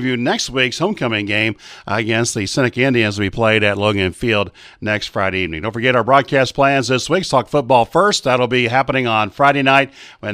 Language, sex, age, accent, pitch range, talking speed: English, male, 50-69, American, 120-145 Hz, 195 wpm